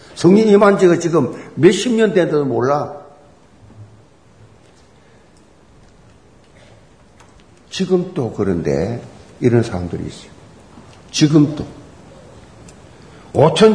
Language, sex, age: Korean, male, 50-69